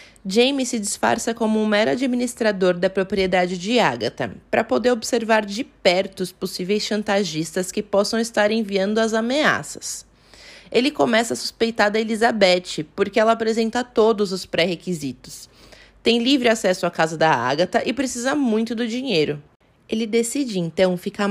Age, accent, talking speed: 20-39, Brazilian, 150 wpm